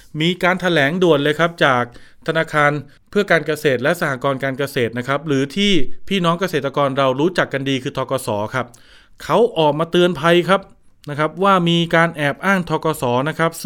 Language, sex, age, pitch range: Thai, male, 20-39, 135-175 Hz